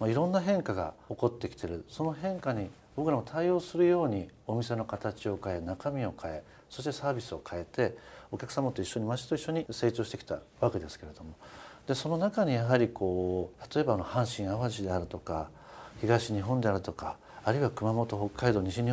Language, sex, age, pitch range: Japanese, male, 50-69, 95-140 Hz